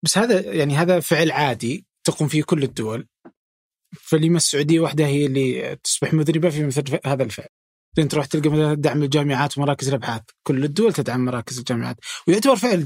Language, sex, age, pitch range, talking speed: Arabic, male, 20-39, 120-155 Hz, 165 wpm